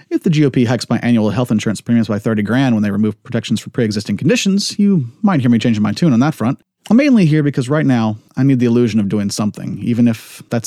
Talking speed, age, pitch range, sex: 255 wpm, 30-49, 110-145 Hz, male